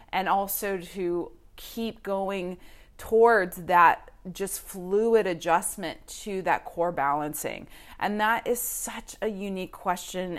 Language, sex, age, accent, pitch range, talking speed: English, female, 30-49, American, 175-215 Hz, 120 wpm